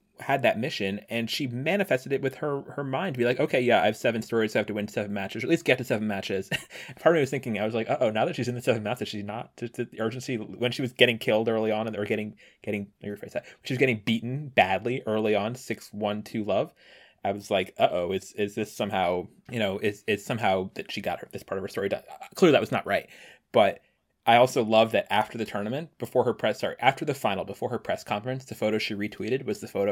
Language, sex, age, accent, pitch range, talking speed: English, male, 20-39, American, 105-130 Hz, 270 wpm